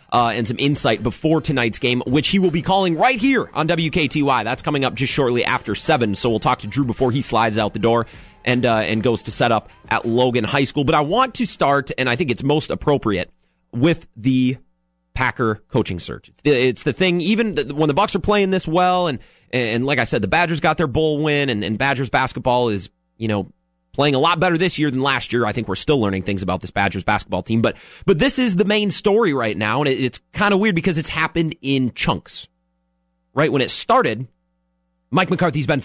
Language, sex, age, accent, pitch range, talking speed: English, male, 30-49, American, 115-160 Hz, 235 wpm